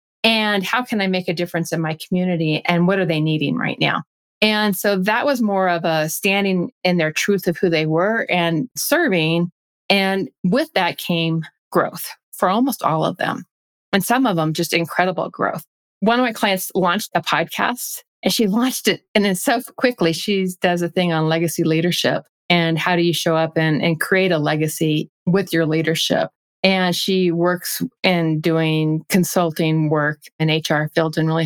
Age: 40-59